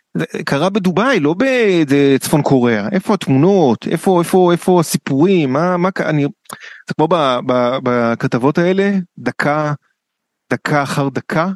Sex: male